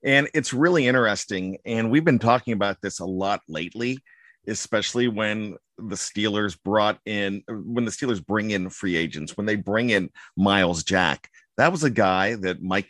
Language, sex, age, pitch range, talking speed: English, male, 50-69, 95-130 Hz, 175 wpm